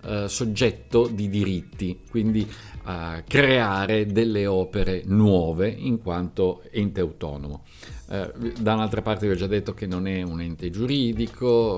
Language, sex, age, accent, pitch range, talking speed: Italian, male, 50-69, native, 90-120 Hz, 125 wpm